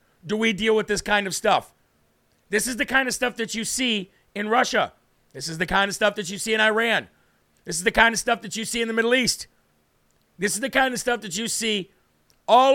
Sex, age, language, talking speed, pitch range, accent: male, 50-69, English, 250 wpm, 195-225 Hz, American